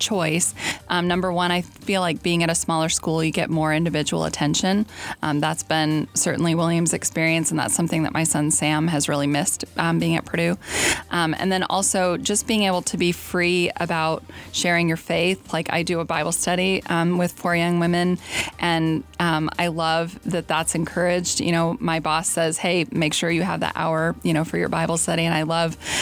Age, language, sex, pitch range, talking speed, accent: 20-39, English, female, 160-175 Hz, 210 wpm, American